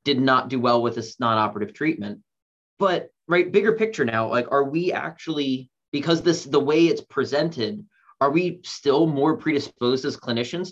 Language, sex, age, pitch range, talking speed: English, male, 30-49, 110-145 Hz, 170 wpm